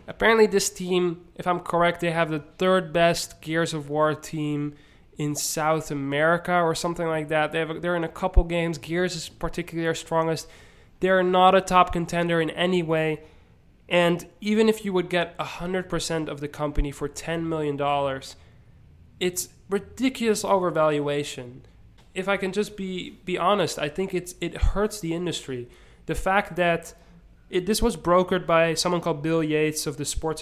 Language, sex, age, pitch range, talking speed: English, male, 20-39, 155-185 Hz, 175 wpm